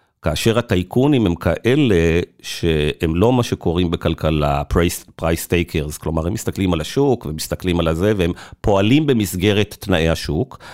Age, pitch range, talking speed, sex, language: 40-59, 85-115 Hz, 130 wpm, male, Hebrew